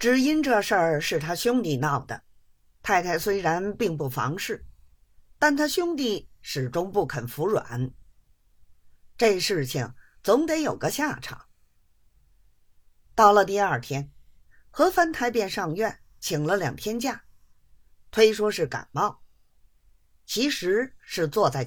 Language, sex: Chinese, female